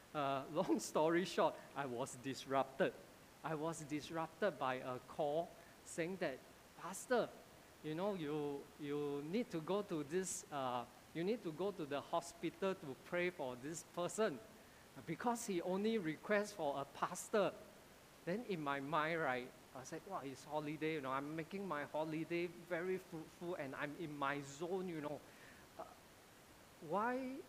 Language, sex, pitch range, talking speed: English, male, 145-205 Hz, 155 wpm